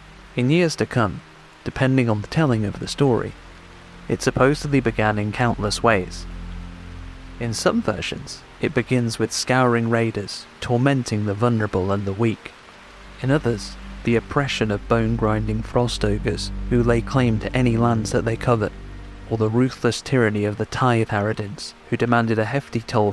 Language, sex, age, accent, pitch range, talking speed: English, male, 30-49, British, 100-120 Hz, 160 wpm